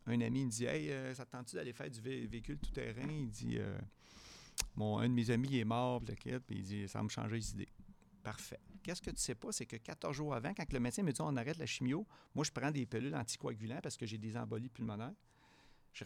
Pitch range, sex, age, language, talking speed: 110-135 Hz, male, 50-69, French, 280 wpm